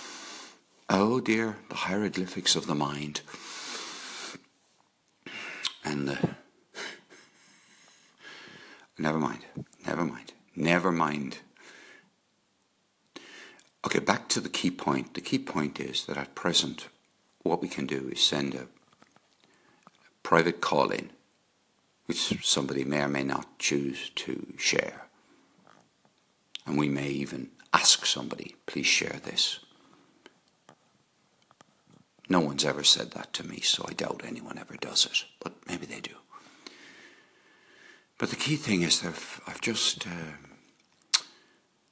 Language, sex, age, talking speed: English, male, 60-79, 120 wpm